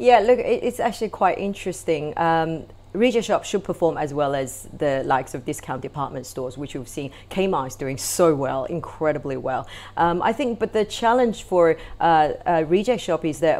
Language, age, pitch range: English, 30-49, 135-165 Hz